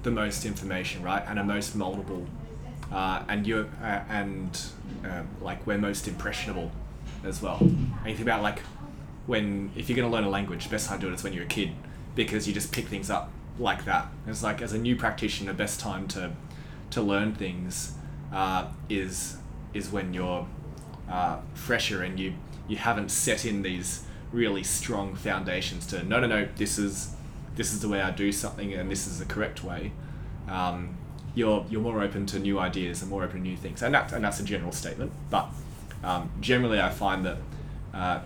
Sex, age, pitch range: male, 20-39, 95-110 Hz